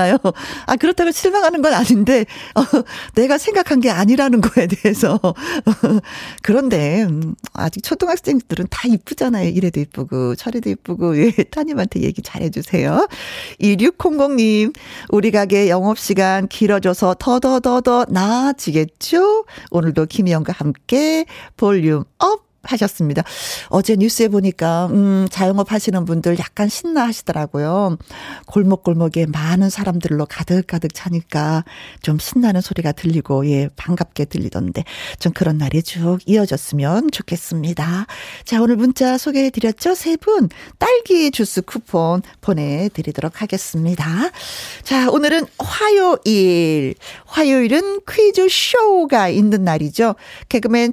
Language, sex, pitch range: Korean, female, 175-255 Hz